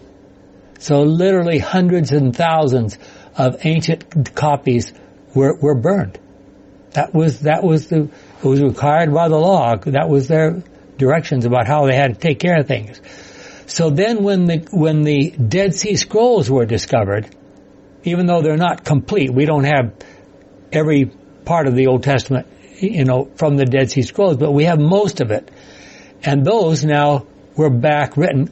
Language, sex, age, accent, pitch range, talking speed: English, male, 60-79, American, 130-160 Hz, 165 wpm